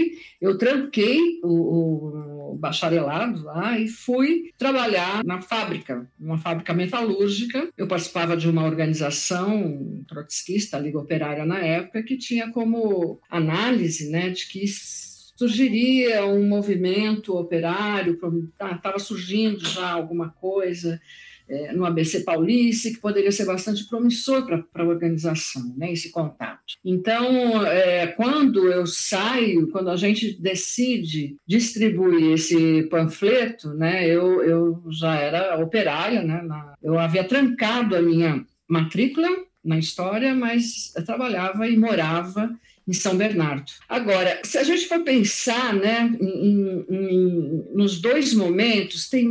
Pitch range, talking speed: 170-230 Hz, 130 wpm